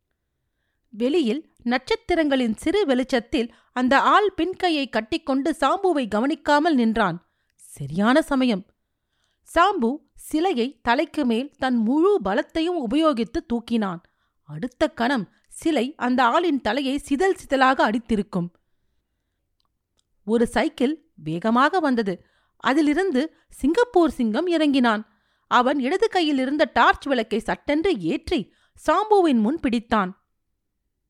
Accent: native